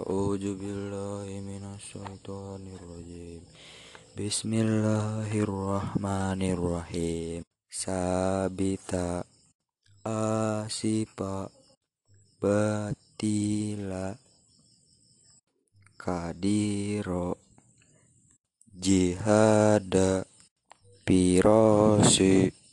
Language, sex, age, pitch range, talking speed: Indonesian, male, 20-39, 95-110 Hz, 30 wpm